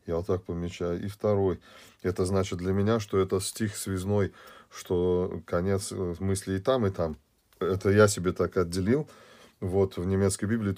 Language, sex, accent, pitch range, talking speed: Russian, male, native, 90-105 Hz, 165 wpm